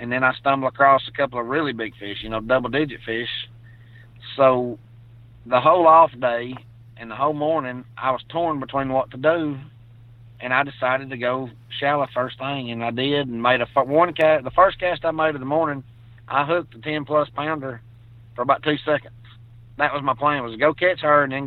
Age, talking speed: 30-49, 210 wpm